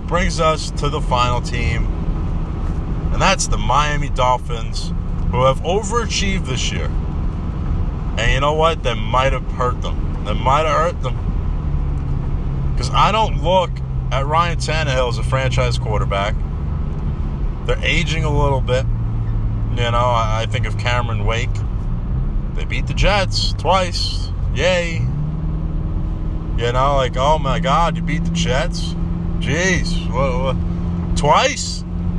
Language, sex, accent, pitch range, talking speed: English, male, American, 75-120 Hz, 135 wpm